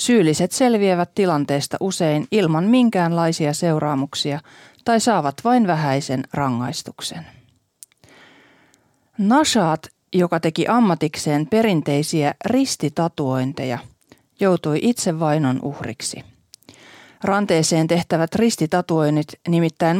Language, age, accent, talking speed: Finnish, 40-59, native, 80 wpm